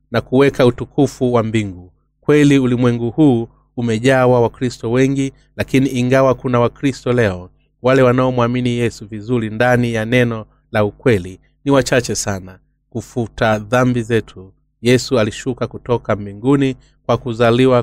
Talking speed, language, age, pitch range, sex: 130 wpm, Swahili, 30-49, 105-130 Hz, male